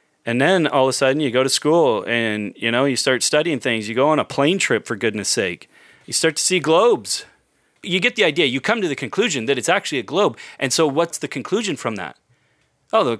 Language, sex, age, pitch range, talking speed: English, male, 30-49, 130-185 Hz, 245 wpm